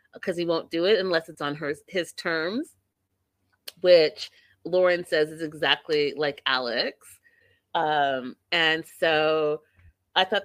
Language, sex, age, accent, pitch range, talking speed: English, female, 30-49, American, 150-200 Hz, 130 wpm